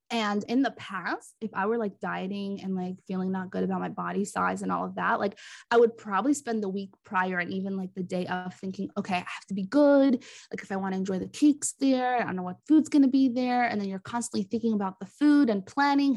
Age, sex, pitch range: 20-39, female, 195-255 Hz